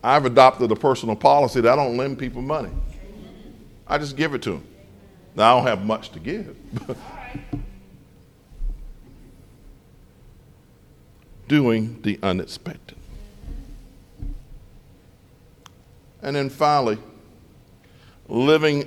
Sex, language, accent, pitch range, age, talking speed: male, English, American, 110-145 Hz, 50-69, 100 wpm